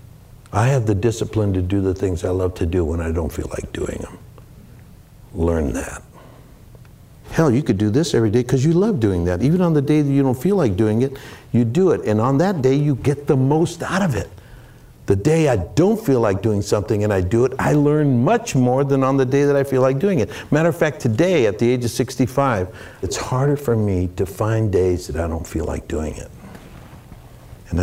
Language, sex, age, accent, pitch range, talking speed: English, male, 60-79, American, 95-130 Hz, 235 wpm